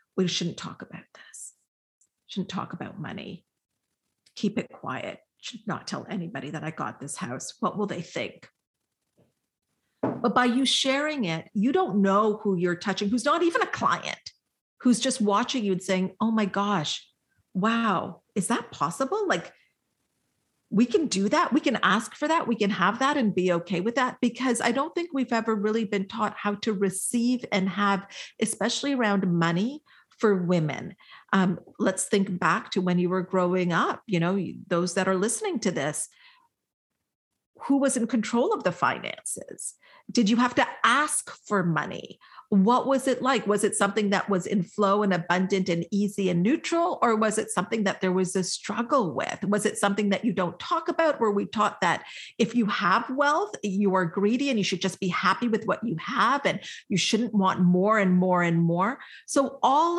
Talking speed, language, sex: 190 wpm, English, female